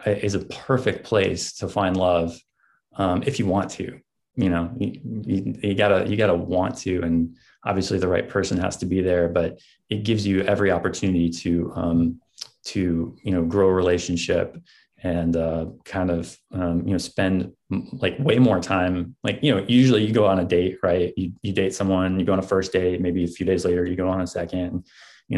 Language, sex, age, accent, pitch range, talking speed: English, male, 20-39, American, 90-105 Hz, 210 wpm